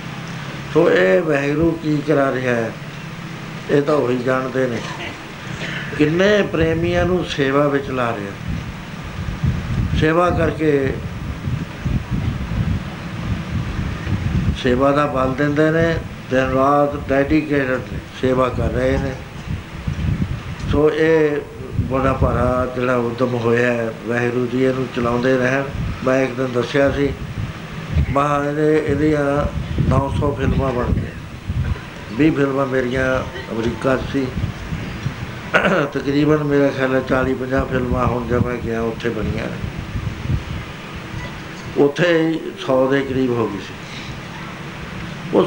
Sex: male